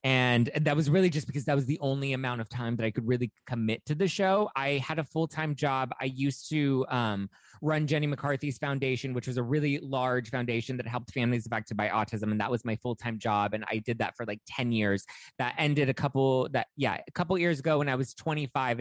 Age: 20-39